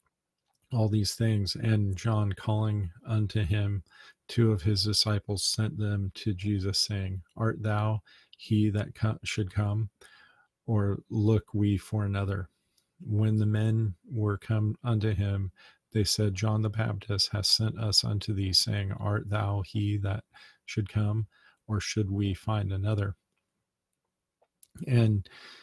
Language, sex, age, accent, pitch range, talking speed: English, male, 40-59, American, 100-110 Hz, 135 wpm